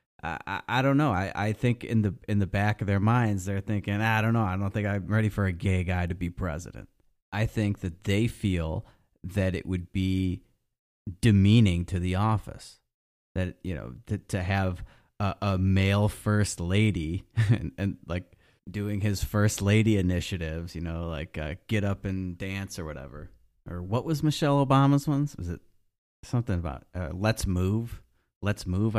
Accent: American